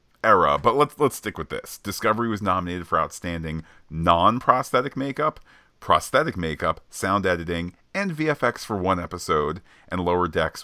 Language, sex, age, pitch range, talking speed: English, male, 40-59, 80-95 Hz, 145 wpm